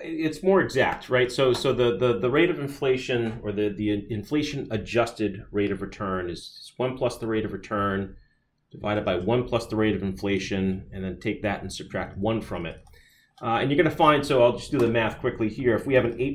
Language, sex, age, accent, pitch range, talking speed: English, male, 30-49, American, 105-130 Hz, 230 wpm